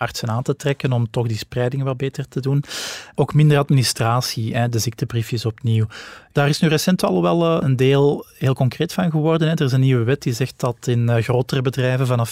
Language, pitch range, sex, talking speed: Dutch, 115-135 Hz, male, 205 wpm